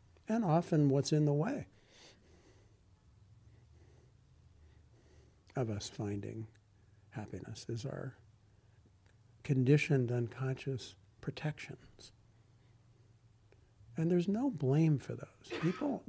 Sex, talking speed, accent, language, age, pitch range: male, 80 wpm, American, English, 60-79, 105-135 Hz